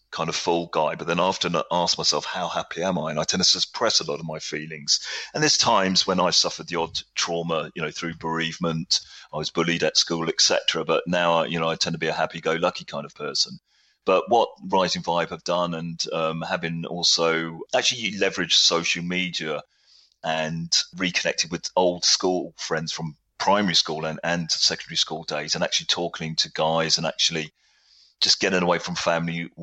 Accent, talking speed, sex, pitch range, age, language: British, 195 wpm, male, 80-85 Hz, 30-49, English